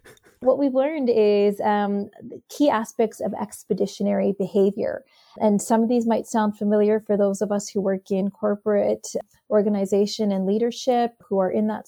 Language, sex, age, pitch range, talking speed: English, female, 30-49, 200-245 Hz, 160 wpm